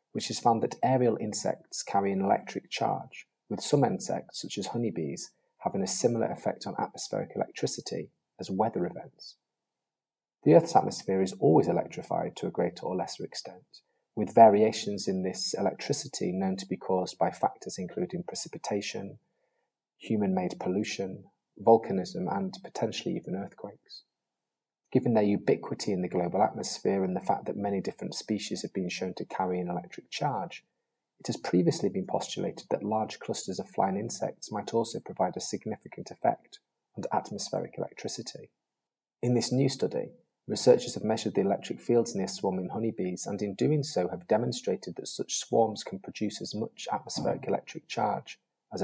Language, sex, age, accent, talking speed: English, male, 30-49, British, 160 wpm